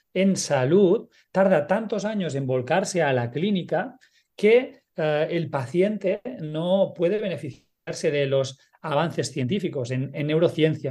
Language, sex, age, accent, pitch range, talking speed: Spanish, male, 40-59, Spanish, 145-185 Hz, 130 wpm